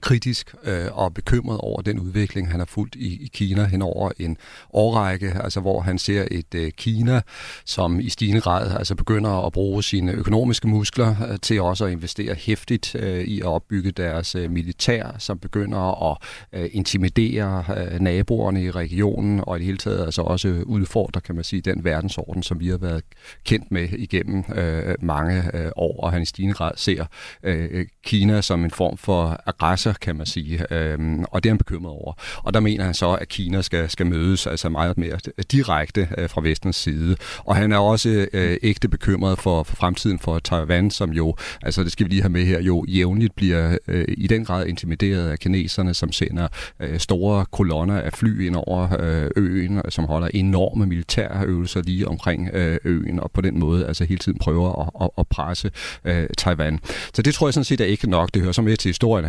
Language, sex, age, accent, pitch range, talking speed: Danish, male, 40-59, native, 85-100 Hz, 195 wpm